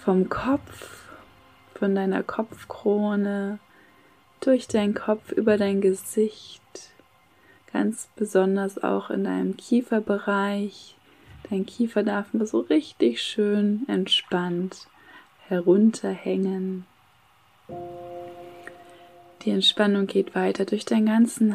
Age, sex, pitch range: 20-39, female, 185-220 Hz